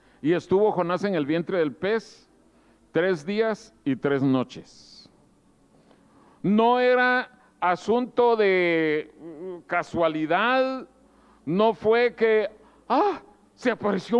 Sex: male